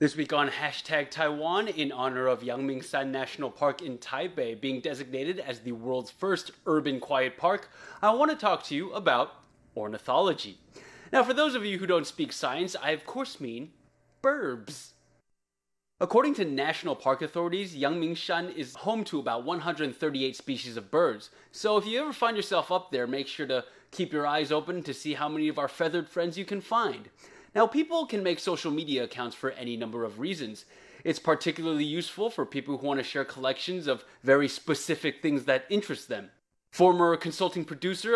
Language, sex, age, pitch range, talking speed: English, male, 20-39, 130-180 Hz, 180 wpm